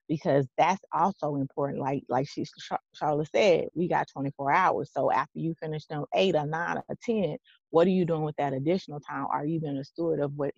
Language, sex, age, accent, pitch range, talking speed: English, female, 20-39, American, 140-165 Hz, 215 wpm